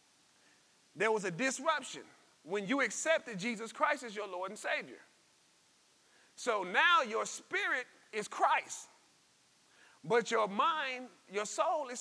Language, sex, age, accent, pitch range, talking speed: English, male, 30-49, American, 225-320 Hz, 130 wpm